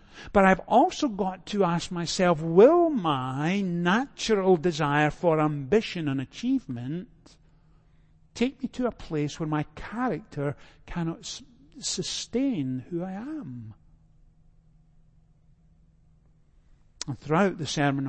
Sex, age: male, 60-79